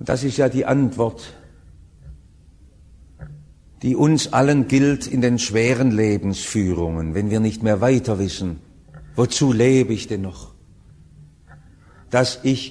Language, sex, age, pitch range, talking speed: English, male, 50-69, 110-155 Hz, 125 wpm